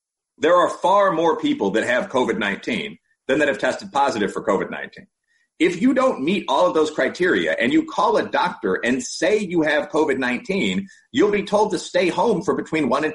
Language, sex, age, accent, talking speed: English, male, 40-59, American, 195 wpm